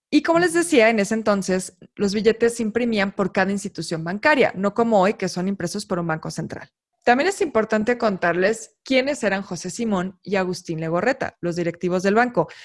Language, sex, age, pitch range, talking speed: Spanish, female, 20-39, 185-245 Hz, 190 wpm